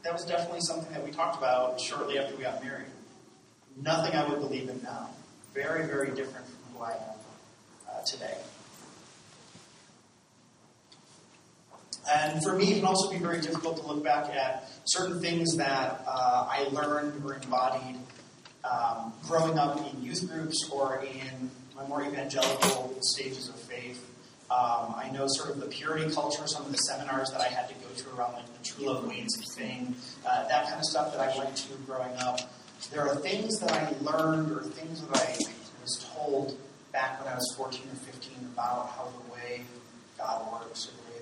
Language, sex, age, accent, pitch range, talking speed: English, male, 30-49, American, 125-155 Hz, 185 wpm